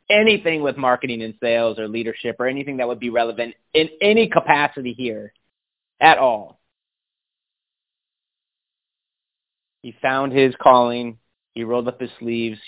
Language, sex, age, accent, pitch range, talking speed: English, male, 30-49, American, 110-125 Hz, 135 wpm